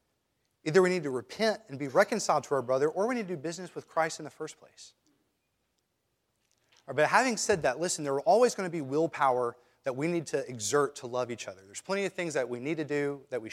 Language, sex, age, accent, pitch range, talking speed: English, male, 30-49, American, 125-160 Hz, 245 wpm